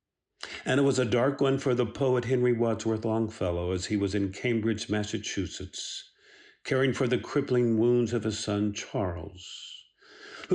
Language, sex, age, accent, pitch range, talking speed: English, male, 50-69, American, 100-125 Hz, 160 wpm